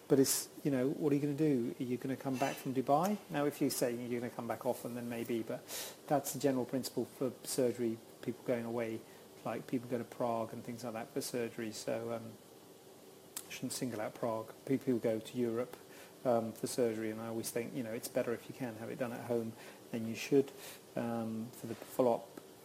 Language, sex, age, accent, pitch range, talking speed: English, male, 40-59, British, 115-135 Hz, 235 wpm